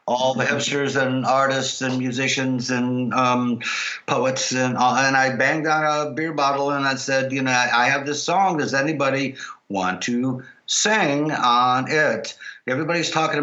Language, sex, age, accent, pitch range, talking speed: English, male, 60-79, American, 125-145 Hz, 160 wpm